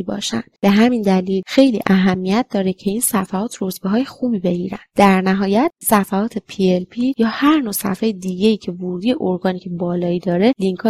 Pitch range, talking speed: 185-230 Hz, 170 wpm